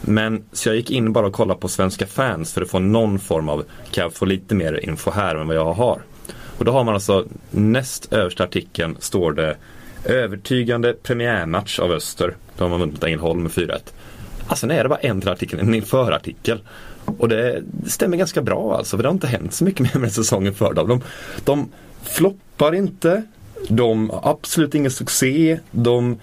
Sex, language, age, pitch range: male, Swedish, 30-49, 90-120 Hz